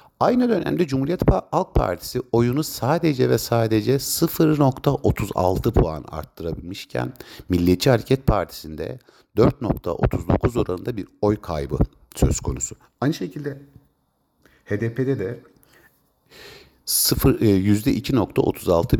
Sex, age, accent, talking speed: male, 60-79, native, 85 wpm